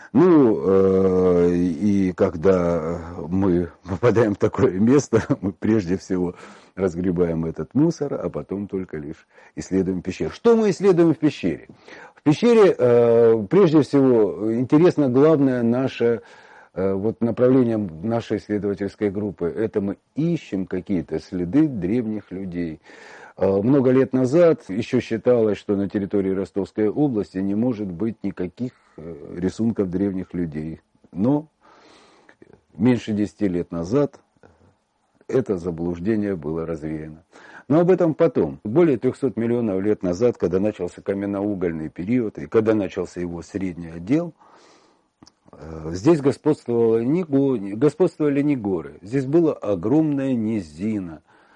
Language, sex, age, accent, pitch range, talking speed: Russian, male, 40-59, native, 90-130 Hz, 120 wpm